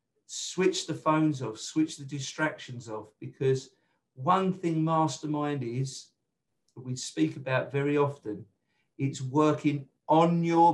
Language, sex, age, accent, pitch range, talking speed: English, male, 50-69, British, 130-155 Hz, 130 wpm